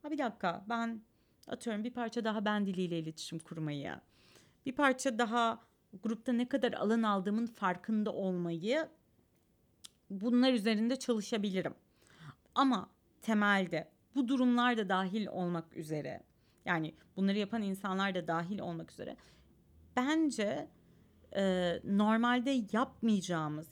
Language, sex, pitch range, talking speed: Turkish, female, 180-240 Hz, 110 wpm